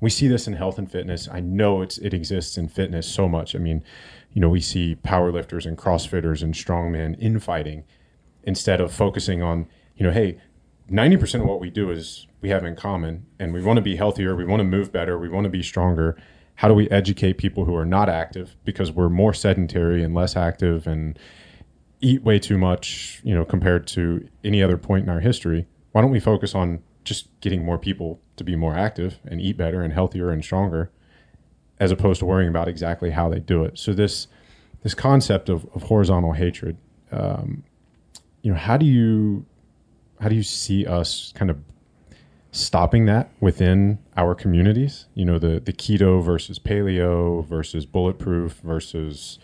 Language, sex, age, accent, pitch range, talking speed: English, male, 30-49, American, 85-100 Hz, 195 wpm